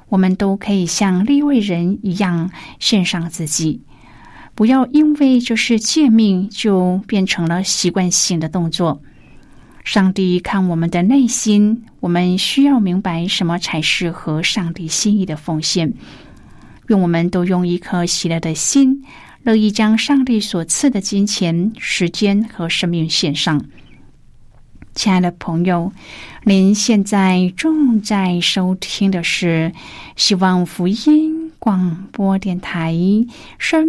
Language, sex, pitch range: Chinese, female, 180-235 Hz